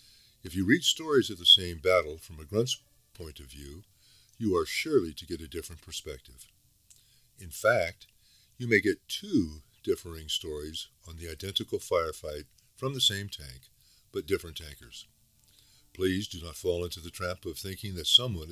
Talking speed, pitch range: 170 wpm, 80-110 Hz